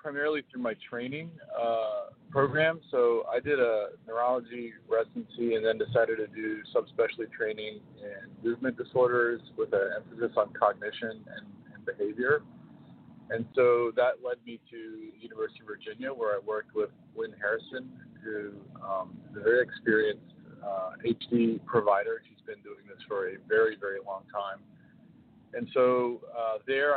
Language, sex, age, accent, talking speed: English, male, 40-59, American, 150 wpm